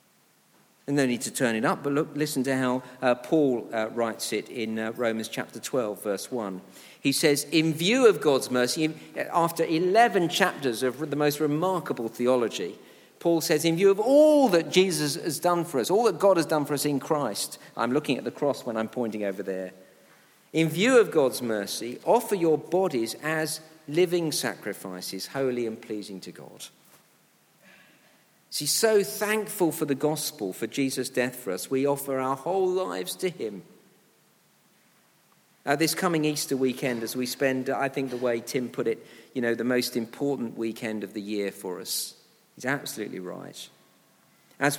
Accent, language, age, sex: British, English, 50-69, male